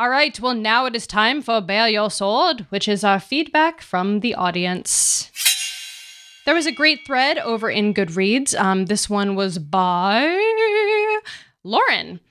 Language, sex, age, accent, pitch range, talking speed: English, female, 20-39, American, 185-255 Hz, 155 wpm